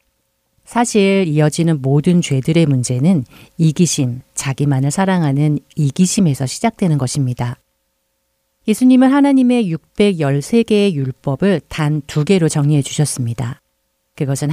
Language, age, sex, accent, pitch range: Korean, 40-59, female, native, 130-185 Hz